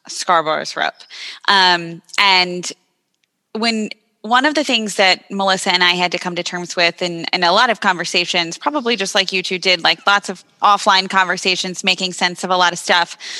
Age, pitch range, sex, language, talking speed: 10-29, 180-225 Hz, female, English, 195 wpm